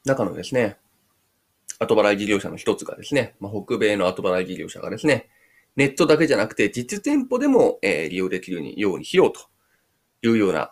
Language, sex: Japanese, male